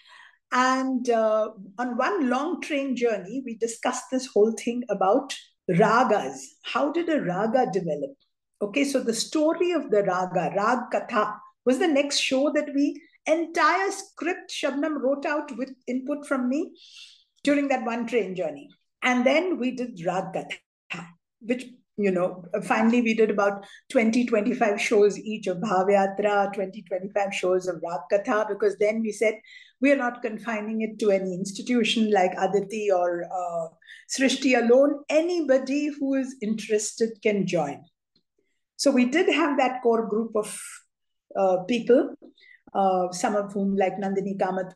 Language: English